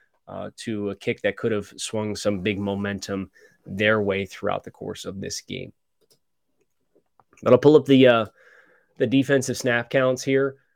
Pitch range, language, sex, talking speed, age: 110-135 Hz, English, male, 165 wpm, 20-39